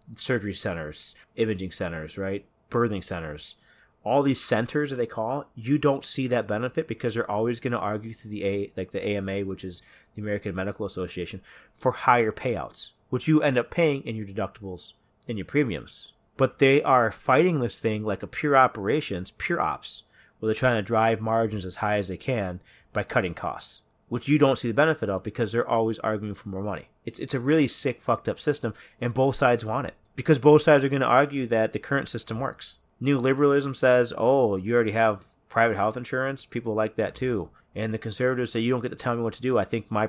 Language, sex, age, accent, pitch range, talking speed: English, male, 30-49, American, 105-130 Hz, 215 wpm